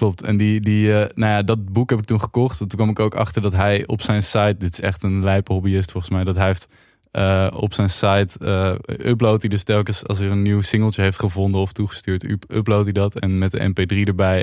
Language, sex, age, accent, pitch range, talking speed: Dutch, male, 20-39, Dutch, 95-105 Hz, 245 wpm